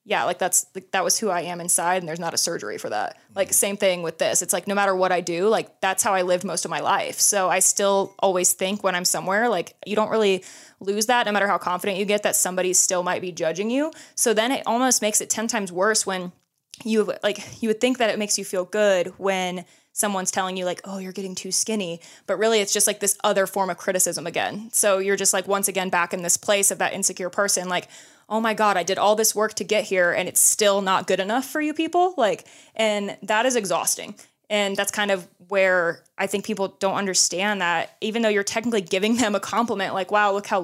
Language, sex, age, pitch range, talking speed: English, female, 20-39, 185-215 Hz, 250 wpm